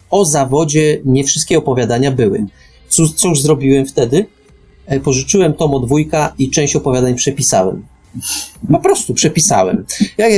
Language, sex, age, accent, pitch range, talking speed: Polish, male, 30-49, native, 120-155 Hz, 125 wpm